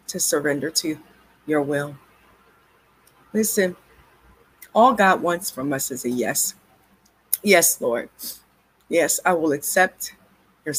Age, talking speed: 40-59, 115 wpm